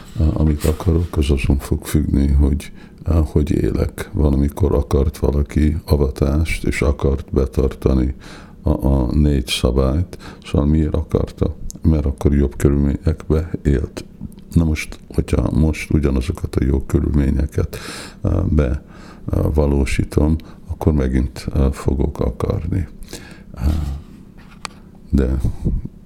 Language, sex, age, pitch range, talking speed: Hungarian, male, 60-79, 70-80 Hz, 95 wpm